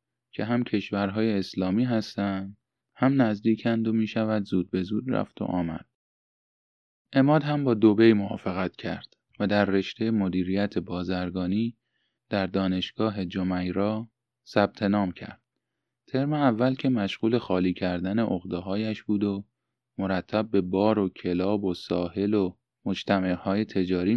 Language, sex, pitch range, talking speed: Persian, male, 95-115 Hz, 130 wpm